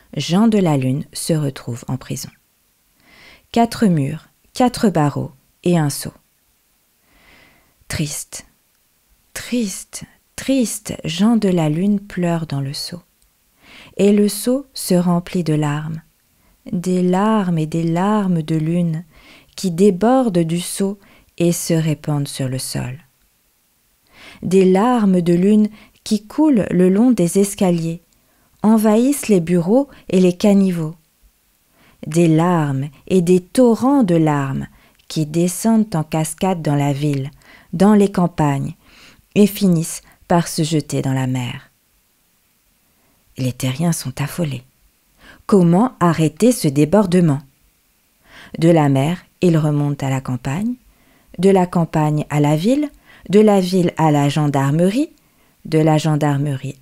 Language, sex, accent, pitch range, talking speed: French, female, French, 150-200 Hz, 130 wpm